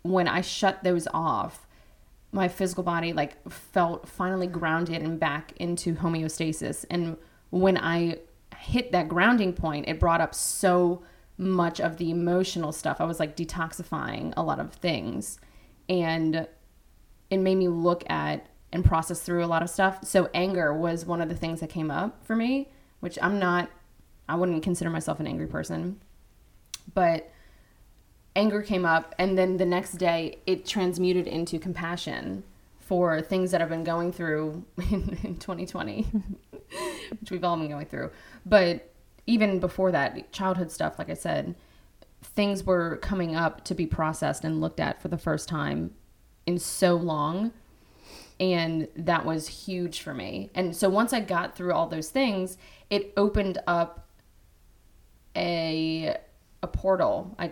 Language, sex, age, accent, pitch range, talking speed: English, female, 20-39, American, 165-185 Hz, 160 wpm